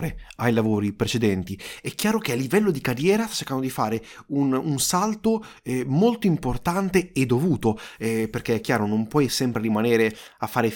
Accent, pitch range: native, 115-155 Hz